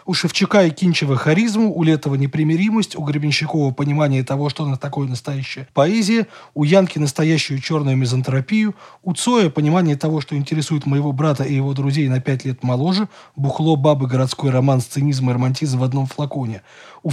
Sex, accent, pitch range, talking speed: male, native, 135-180 Hz, 170 wpm